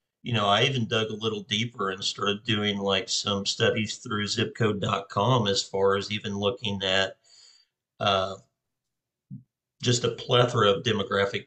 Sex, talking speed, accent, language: male, 145 wpm, American, English